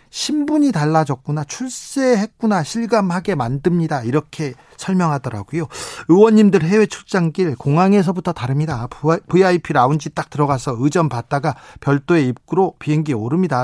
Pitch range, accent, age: 140-185 Hz, native, 40-59